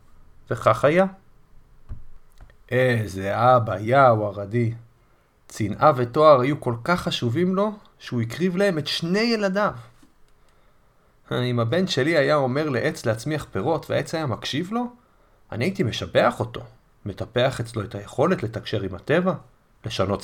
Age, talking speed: 30-49, 125 wpm